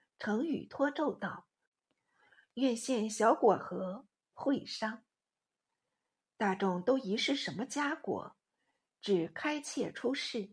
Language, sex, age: Chinese, female, 50-69